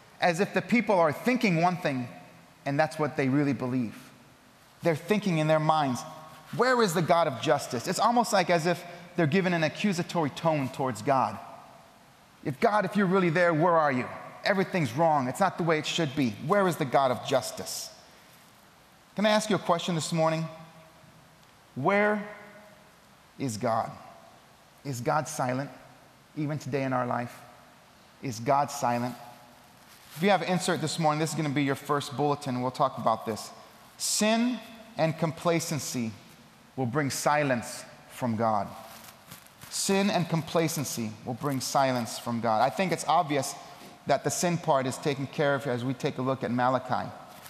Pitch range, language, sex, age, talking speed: 140-180 Hz, English, male, 30-49, 175 wpm